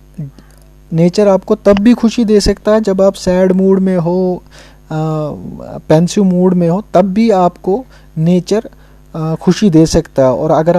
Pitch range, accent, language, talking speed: 155-190 Hz, Indian, English, 160 wpm